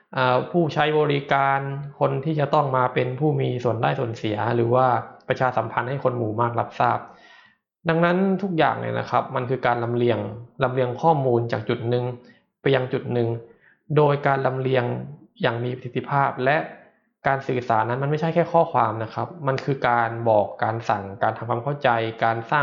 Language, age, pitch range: Thai, 20-39, 115-140 Hz